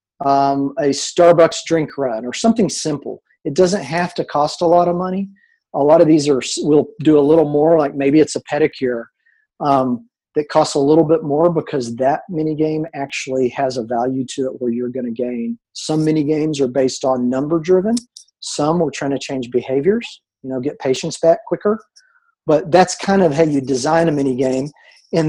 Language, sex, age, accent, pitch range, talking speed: English, male, 40-59, American, 140-175 Hz, 200 wpm